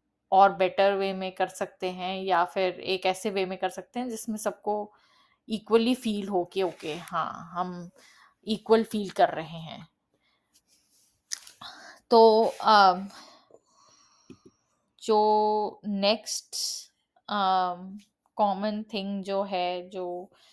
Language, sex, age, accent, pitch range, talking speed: Hindi, female, 20-39, native, 180-210 Hz, 115 wpm